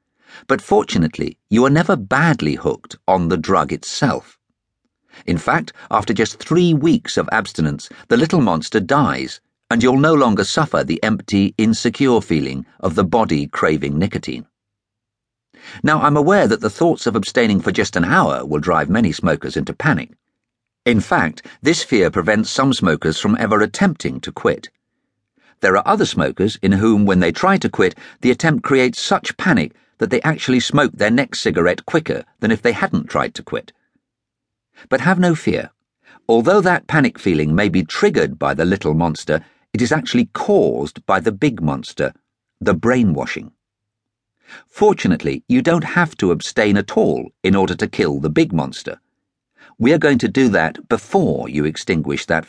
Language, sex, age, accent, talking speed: English, male, 50-69, British, 170 wpm